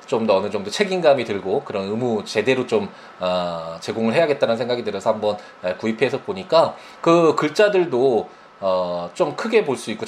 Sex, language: male, Korean